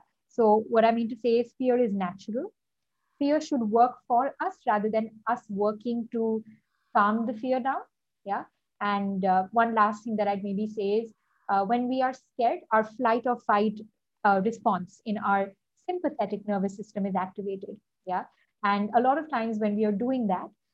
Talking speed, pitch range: 185 wpm, 200-245 Hz